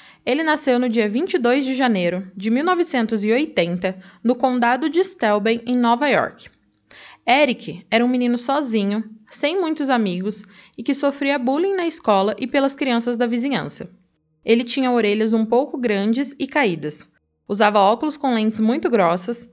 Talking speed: 150 wpm